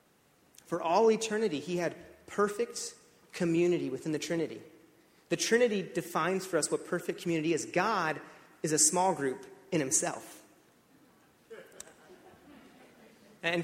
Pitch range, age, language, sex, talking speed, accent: 145-180 Hz, 30-49, English, male, 120 wpm, American